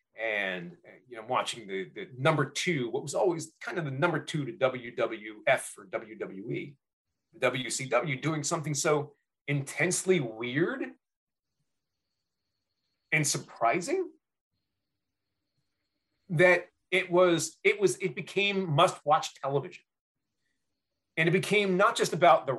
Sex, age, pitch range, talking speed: male, 30-49, 135-180 Hz, 120 wpm